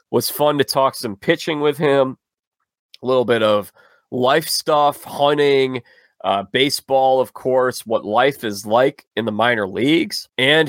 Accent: American